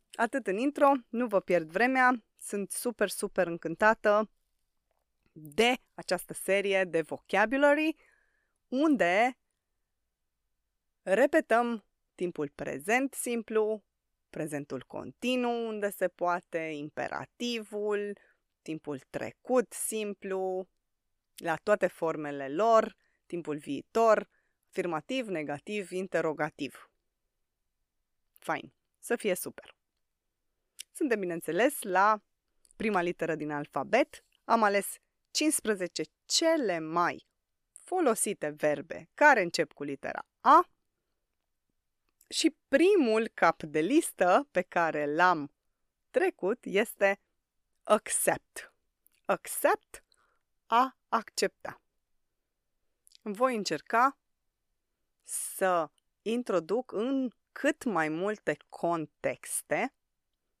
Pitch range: 170-245 Hz